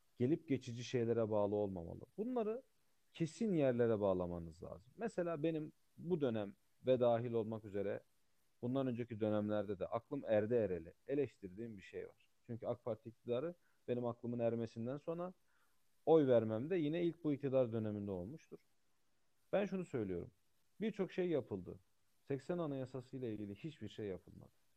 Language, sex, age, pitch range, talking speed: Turkish, male, 40-59, 105-145 Hz, 145 wpm